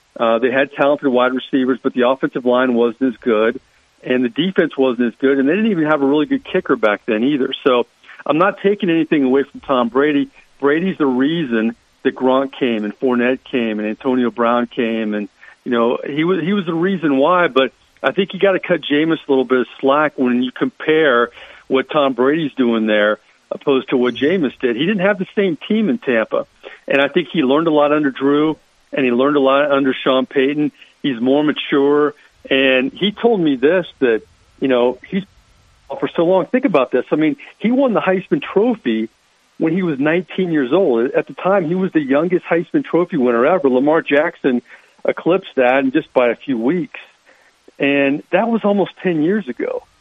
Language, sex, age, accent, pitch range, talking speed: English, male, 50-69, American, 130-170 Hz, 210 wpm